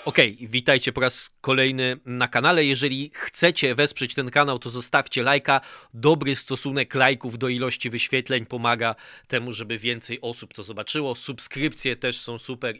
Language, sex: Polish, male